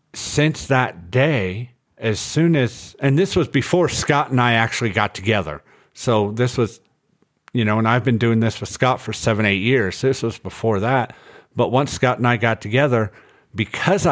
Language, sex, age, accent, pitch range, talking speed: English, male, 50-69, American, 100-125 Hz, 185 wpm